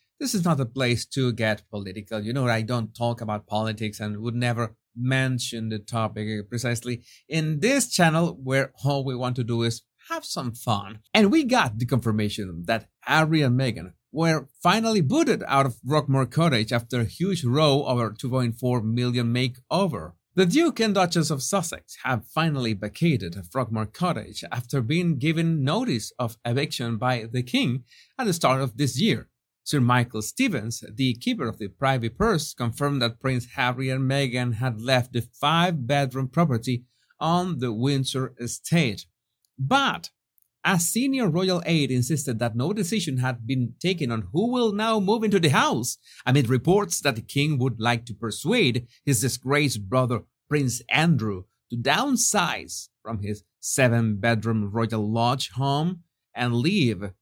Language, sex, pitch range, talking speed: English, male, 115-155 Hz, 160 wpm